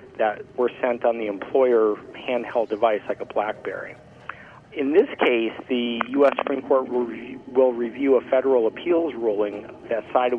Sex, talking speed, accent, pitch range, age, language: male, 160 wpm, American, 115-145 Hz, 40-59, English